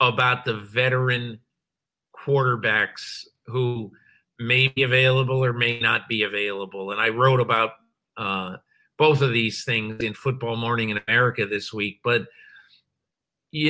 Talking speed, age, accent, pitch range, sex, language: 135 wpm, 50-69, American, 115-140 Hz, male, English